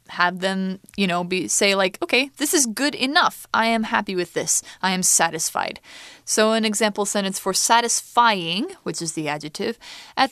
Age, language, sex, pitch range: 20-39, Chinese, female, 180-255 Hz